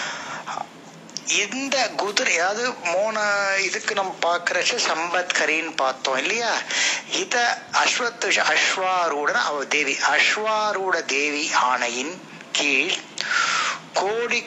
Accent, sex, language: native, male, Tamil